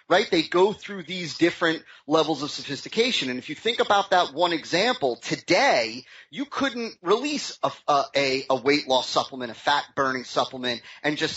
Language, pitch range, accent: English, 145-205 Hz, American